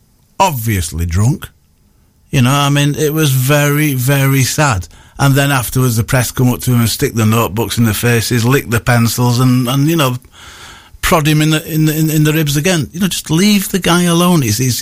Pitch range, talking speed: 105-140 Hz, 215 wpm